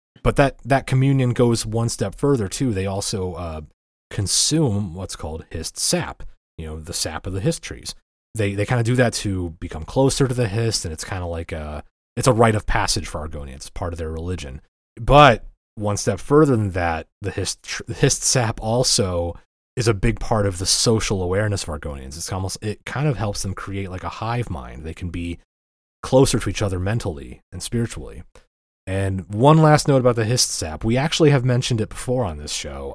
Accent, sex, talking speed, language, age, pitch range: American, male, 210 wpm, English, 30-49, 85-120 Hz